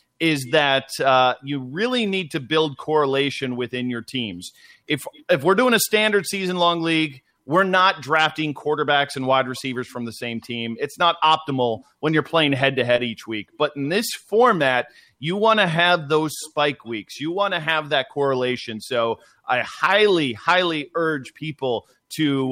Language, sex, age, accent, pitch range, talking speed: English, male, 30-49, American, 130-170 Hz, 170 wpm